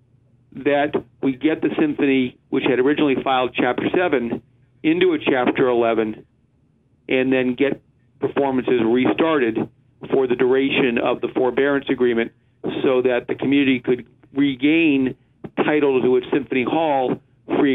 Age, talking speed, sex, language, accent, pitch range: 50-69, 130 wpm, male, English, American, 125-155 Hz